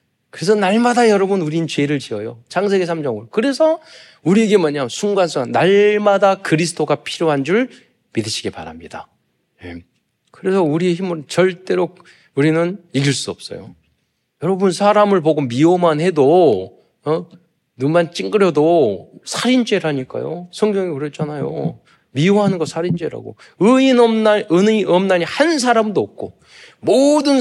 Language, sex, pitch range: Korean, male, 140-205 Hz